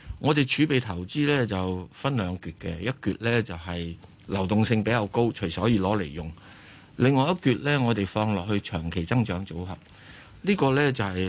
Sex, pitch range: male, 95-120 Hz